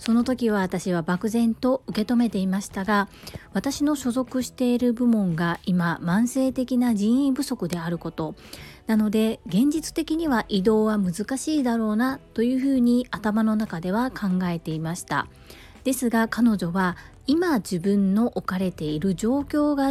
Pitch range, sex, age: 180-245 Hz, female, 40-59